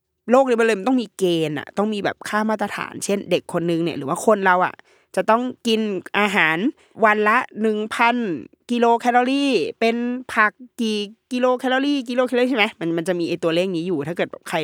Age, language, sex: 20-39, Thai, female